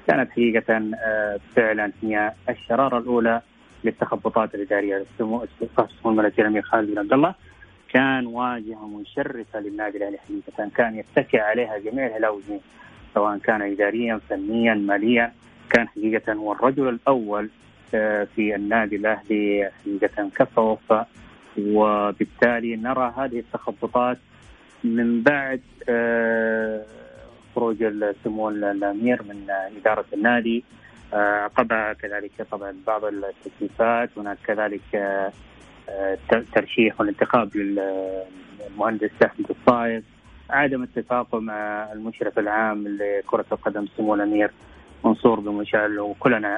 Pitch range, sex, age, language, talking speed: 105-115 Hz, male, 30-49, Arabic, 95 wpm